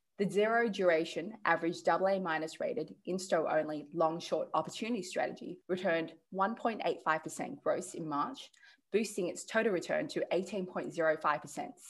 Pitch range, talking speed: 160-205 Hz, 120 wpm